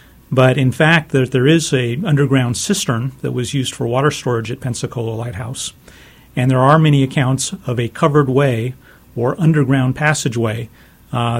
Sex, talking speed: male, 160 wpm